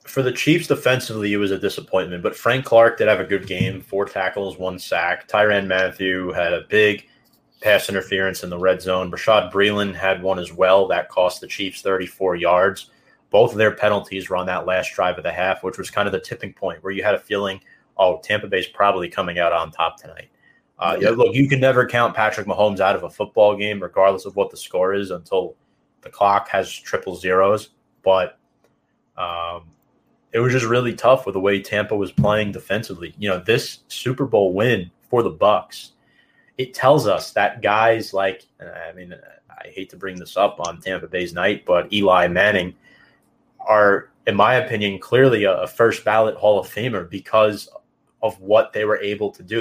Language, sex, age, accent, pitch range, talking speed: English, male, 30-49, American, 95-110 Hz, 200 wpm